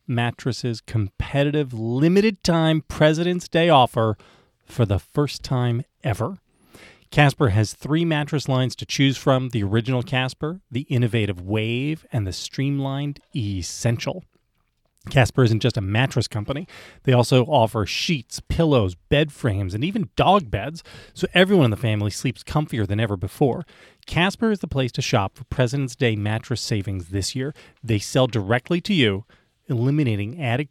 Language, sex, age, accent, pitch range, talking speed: English, male, 30-49, American, 110-145 Hz, 150 wpm